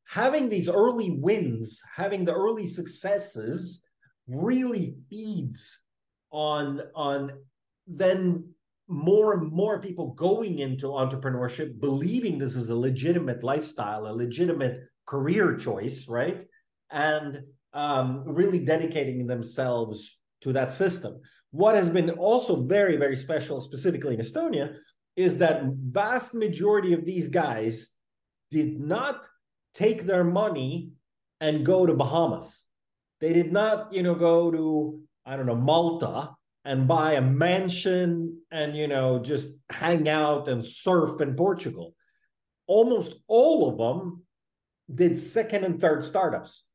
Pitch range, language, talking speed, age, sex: 140-190 Hz, English, 125 wpm, 30-49, male